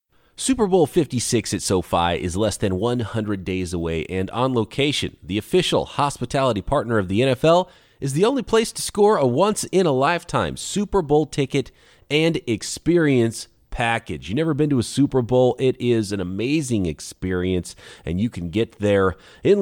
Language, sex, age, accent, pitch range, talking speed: English, male, 30-49, American, 105-160 Hz, 160 wpm